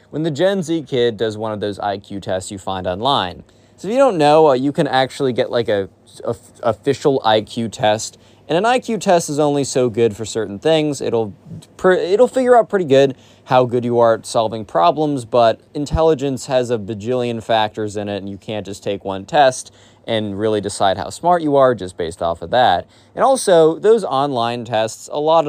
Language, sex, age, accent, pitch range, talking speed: English, male, 20-39, American, 105-145 Hz, 210 wpm